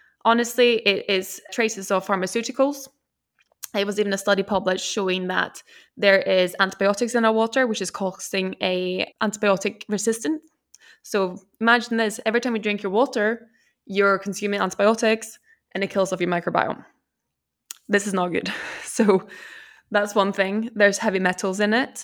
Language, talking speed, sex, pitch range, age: English, 155 wpm, female, 185-225 Hz, 20-39